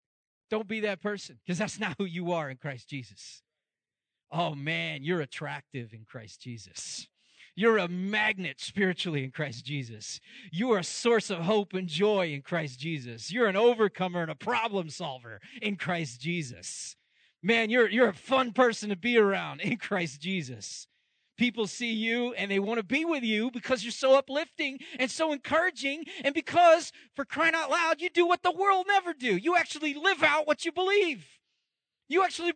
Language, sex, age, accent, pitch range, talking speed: English, male, 30-49, American, 170-270 Hz, 180 wpm